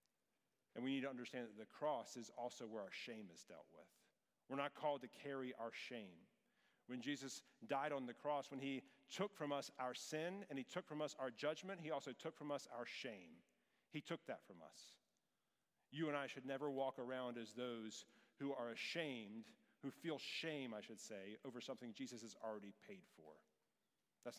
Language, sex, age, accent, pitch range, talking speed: English, male, 40-59, American, 120-150 Hz, 200 wpm